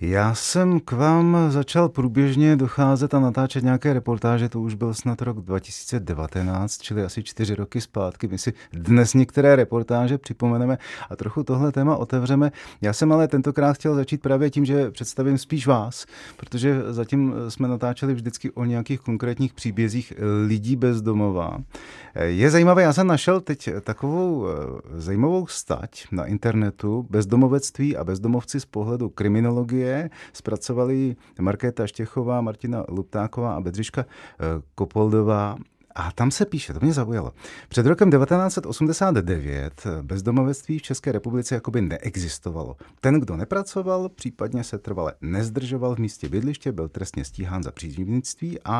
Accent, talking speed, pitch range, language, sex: native, 140 wpm, 100-135 Hz, Czech, male